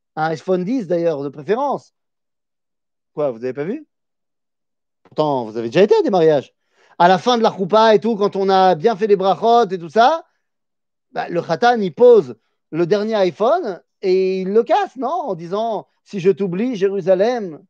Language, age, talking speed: French, 40-59, 195 wpm